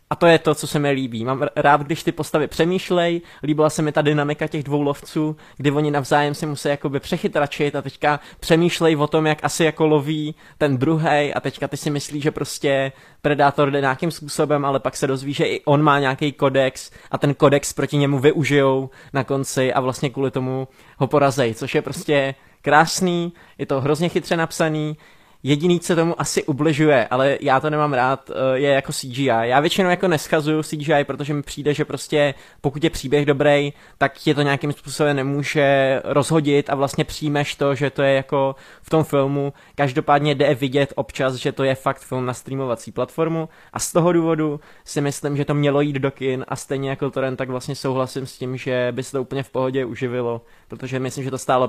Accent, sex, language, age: native, male, Czech, 20-39